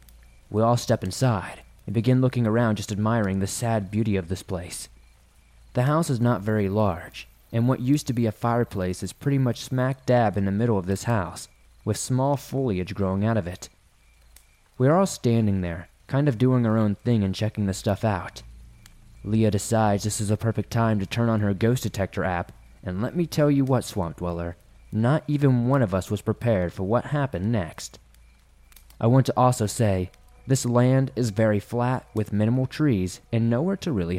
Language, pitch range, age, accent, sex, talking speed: English, 95-125 Hz, 20-39, American, male, 200 wpm